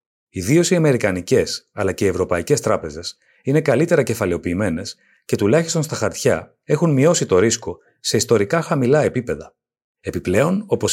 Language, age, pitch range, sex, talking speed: Greek, 40-59, 110-165 Hz, male, 135 wpm